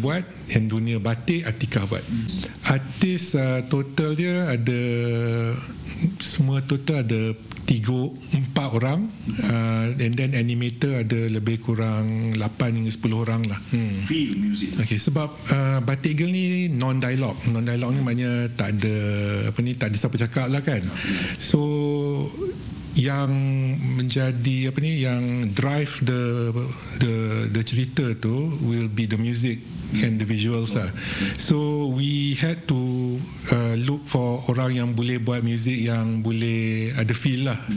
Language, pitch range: Malay, 115-135 Hz